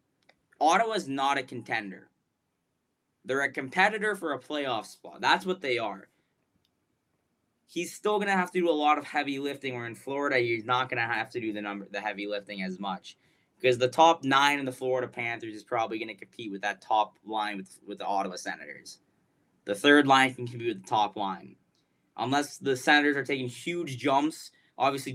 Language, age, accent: English, 20-39, American